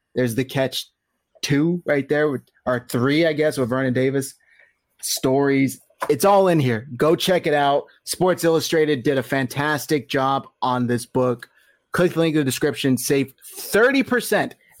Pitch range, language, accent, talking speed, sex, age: 130-160 Hz, English, American, 160 wpm, male, 30-49